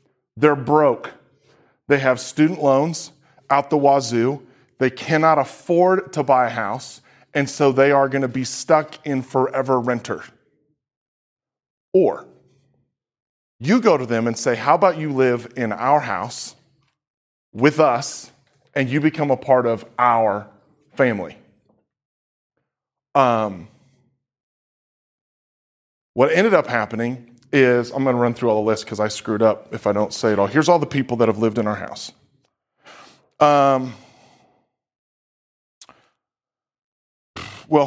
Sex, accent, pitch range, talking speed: male, American, 120-150 Hz, 135 wpm